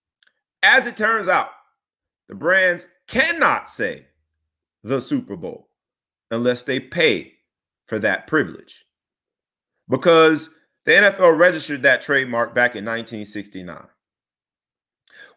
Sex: male